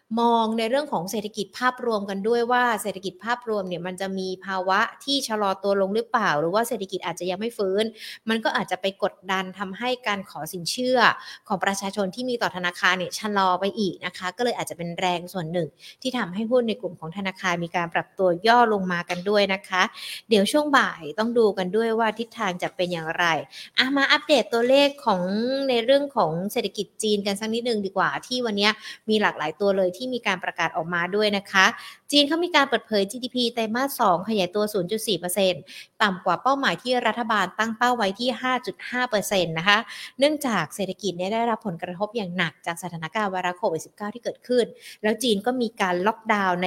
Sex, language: female, Thai